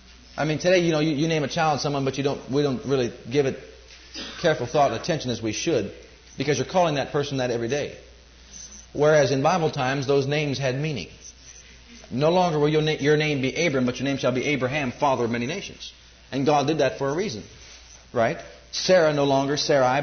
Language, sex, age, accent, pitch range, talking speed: English, male, 40-59, American, 120-170 Hz, 215 wpm